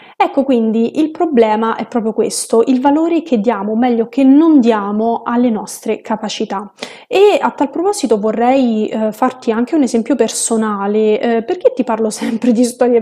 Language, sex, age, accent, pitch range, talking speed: Italian, female, 20-39, native, 215-250 Hz, 165 wpm